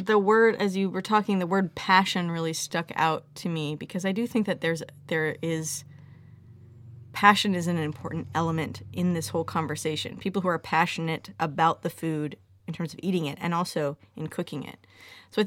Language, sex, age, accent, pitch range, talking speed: English, female, 30-49, American, 155-185 Hz, 195 wpm